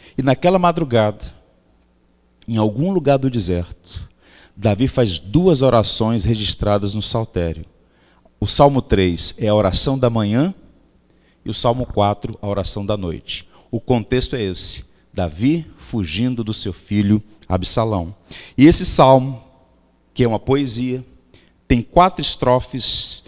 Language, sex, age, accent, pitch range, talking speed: Portuguese, male, 40-59, Brazilian, 95-130 Hz, 130 wpm